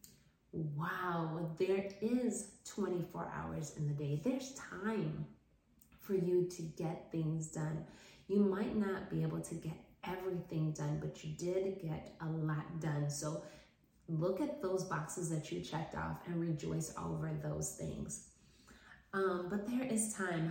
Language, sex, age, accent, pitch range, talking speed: English, female, 20-39, American, 165-205 Hz, 150 wpm